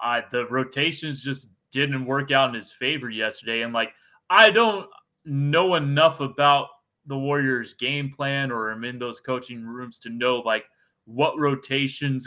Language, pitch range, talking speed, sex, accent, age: English, 120-145 Hz, 160 wpm, male, American, 20-39